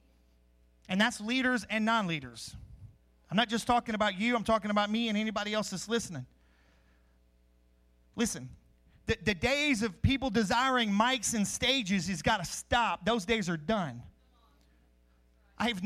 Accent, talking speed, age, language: American, 150 wpm, 40-59, English